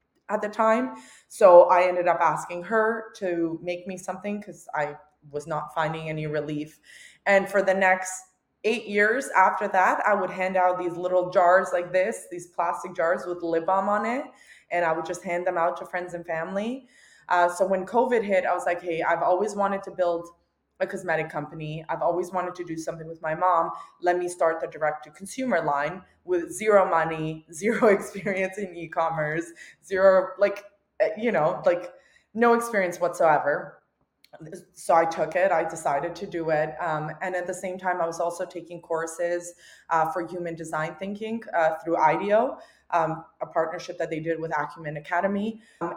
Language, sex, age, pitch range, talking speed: English, female, 20-39, 160-195 Hz, 185 wpm